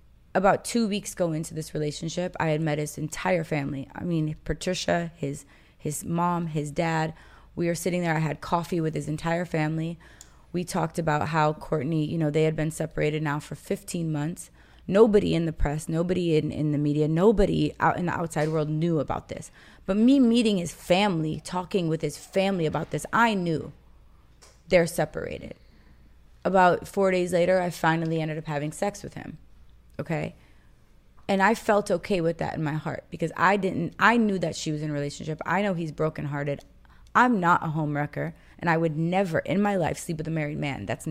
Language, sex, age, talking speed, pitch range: English, female, 20-39, 200 wpm, 155-190 Hz